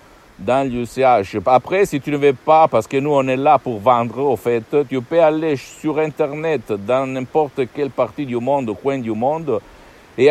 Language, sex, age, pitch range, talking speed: Italian, male, 50-69, 115-150 Hz, 190 wpm